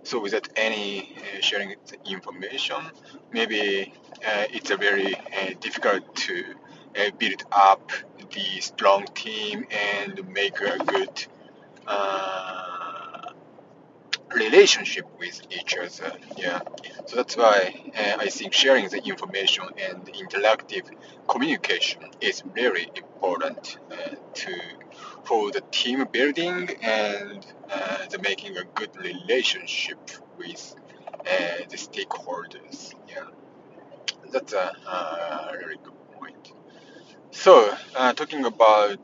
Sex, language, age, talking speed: male, English, 30-49, 115 wpm